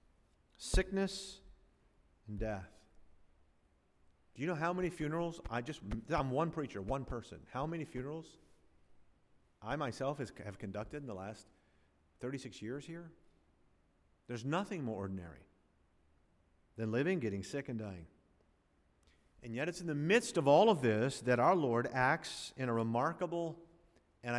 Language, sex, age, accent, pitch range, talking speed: English, male, 50-69, American, 95-155 Hz, 140 wpm